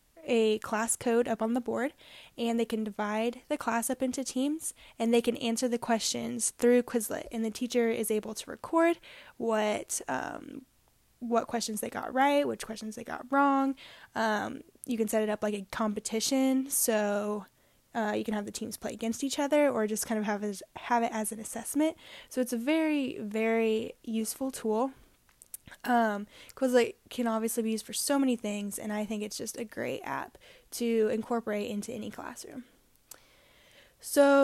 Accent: American